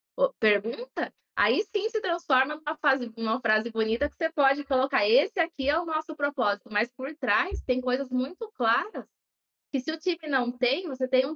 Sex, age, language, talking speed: female, 20-39, Portuguese, 185 wpm